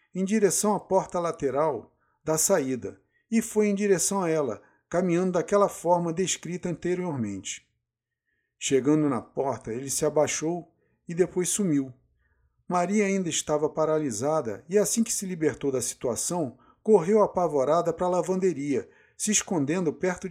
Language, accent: Portuguese, Brazilian